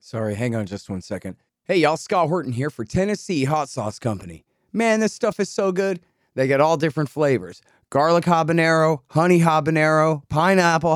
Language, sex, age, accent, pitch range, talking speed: English, male, 30-49, American, 120-165 Hz, 175 wpm